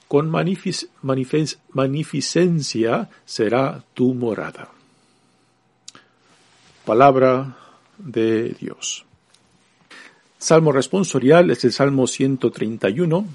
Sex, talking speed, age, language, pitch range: male, 70 wpm, 50-69, Spanish, 125-165 Hz